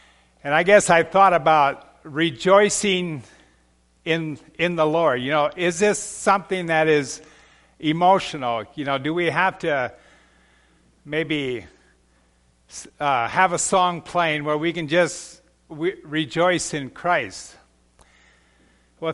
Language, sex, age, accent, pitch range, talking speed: English, male, 50-69, American, 110-175 Hz, 125 wpm